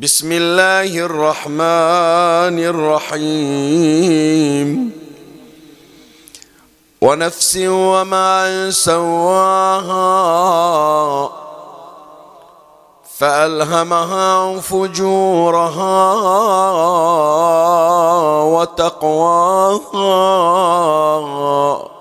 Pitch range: 150-180 Hz